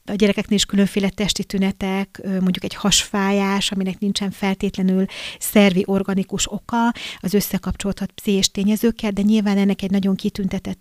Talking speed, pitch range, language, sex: 140 wpm, 190-210 Hz, Hungarian, female